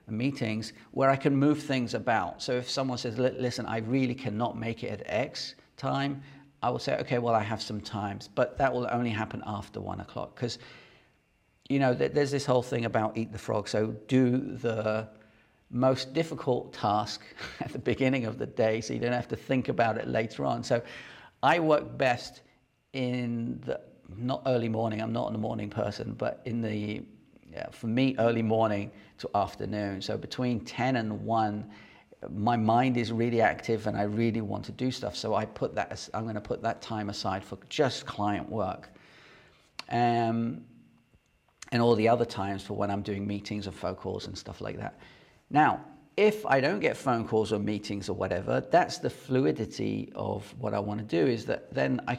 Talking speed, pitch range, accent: 195 wpm, 105-125 Hz, British